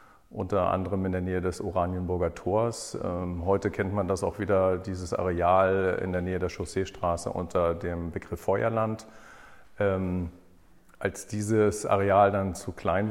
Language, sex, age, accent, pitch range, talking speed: German, male, 40-59, German, 95-105 Hz, 140 wpm